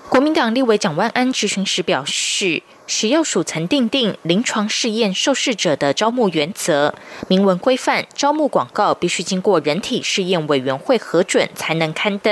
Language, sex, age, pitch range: German, female, 20-39, 180-260 Hz